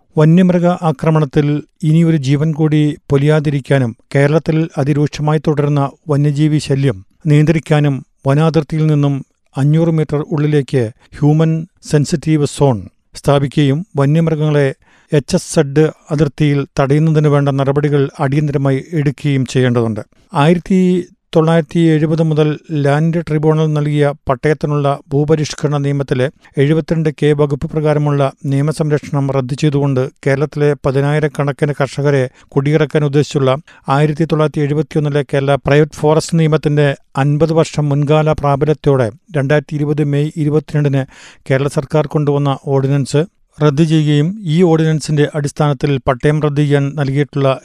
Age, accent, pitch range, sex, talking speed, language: 50-69, native, 140-155 Hz, male, 100 wpm, Malayalam